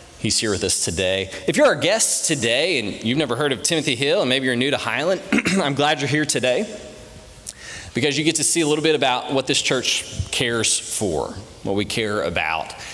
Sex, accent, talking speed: male, American, 215 wpm